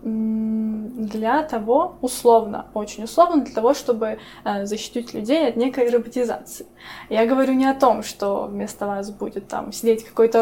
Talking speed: 145 wpm